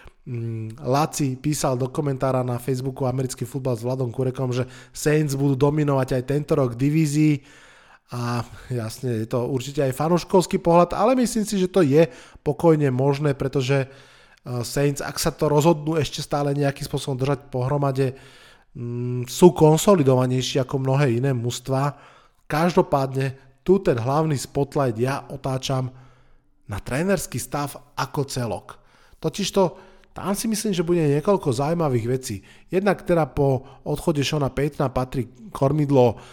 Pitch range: 130-155 Hz